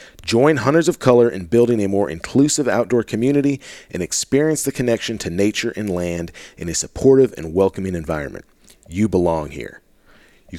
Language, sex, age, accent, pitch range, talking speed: English, male, 40-59, American, 95-120 Hz, 165 wpm